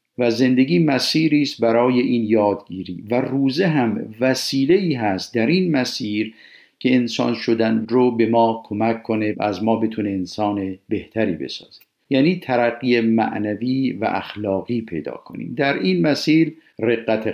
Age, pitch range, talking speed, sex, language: 50-69, 110-135 Hz, 140 wpm, male, Persian